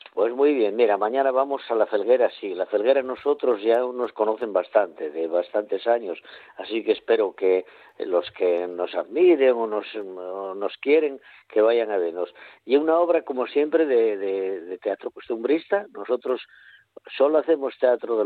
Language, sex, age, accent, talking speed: Spanish, male, 50-69, Spanish, 170 wpm